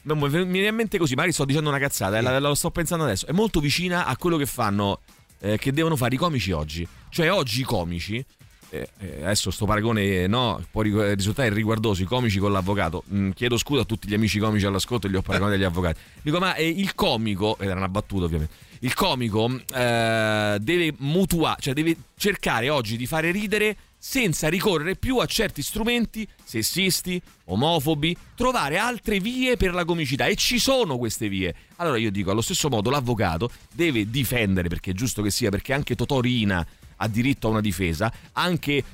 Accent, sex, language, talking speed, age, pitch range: native, male, Italian, 200 wpm, 30-49, 105-165 Hz